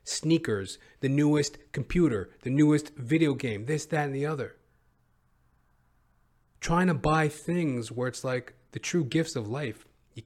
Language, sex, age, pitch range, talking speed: English, male, 40-59, 105-140 Hz, 150 wpm